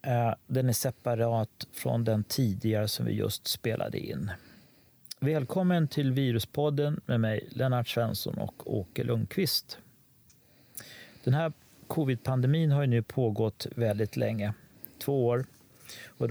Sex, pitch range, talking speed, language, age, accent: male, 115-145 Hz, 120 wpm, Swedish, 40-59, native